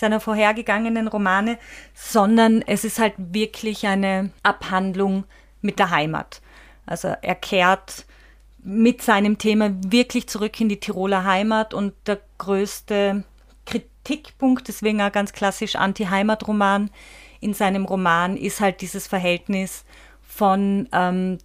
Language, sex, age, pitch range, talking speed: German, female, 30-49, 195-225 Hz, 125 wpm